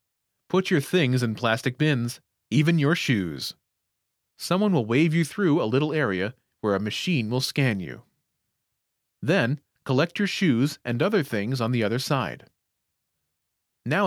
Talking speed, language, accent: 150 wpm, English, American